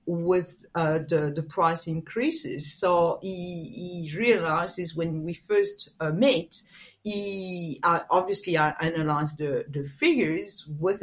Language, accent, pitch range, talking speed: English, French, 160-205 Hz, 130 wpm